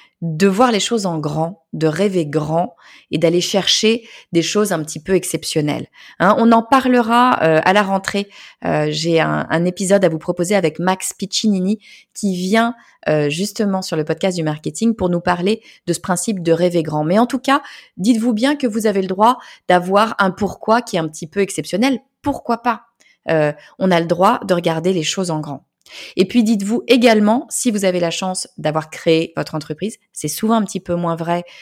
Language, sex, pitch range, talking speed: French, female, 165-220 Hz, 205 wpm